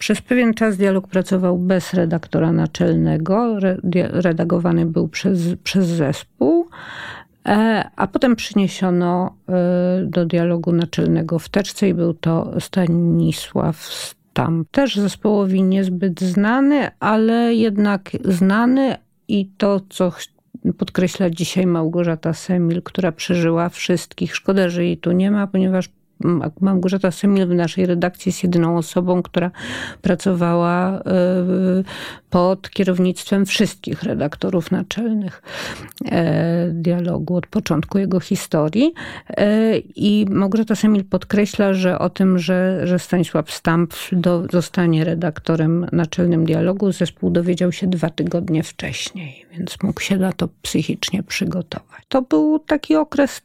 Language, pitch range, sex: Polish, 175-200 Hz, female